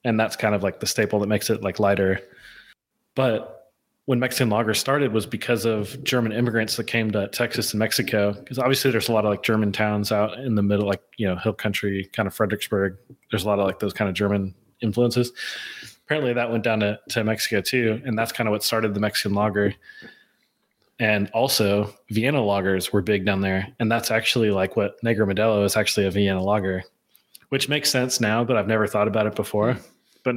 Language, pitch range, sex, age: English, 105-120 Hz, male, 20-39